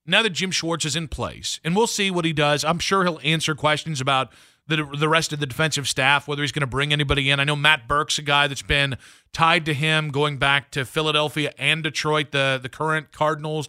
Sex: male